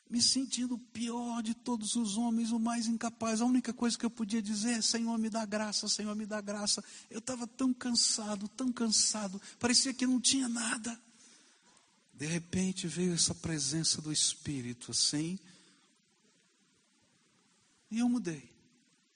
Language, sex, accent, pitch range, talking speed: Portuguese, male, Brazilian, 160-225 Hz, 150 wpm